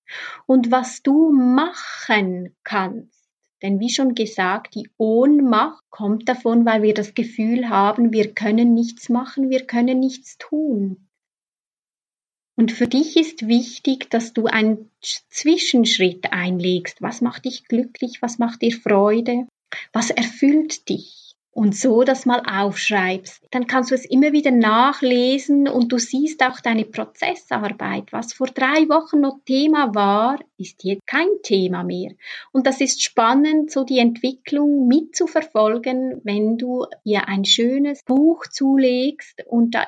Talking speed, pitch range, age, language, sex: 140 wpm, 215-265 Hz, 30-49, German, female